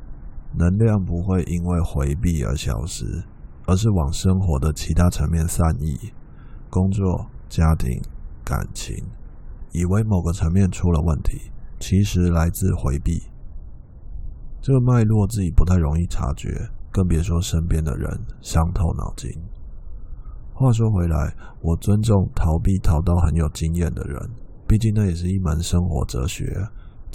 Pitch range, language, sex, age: 80-100 Hz, Chinese, male, 20-39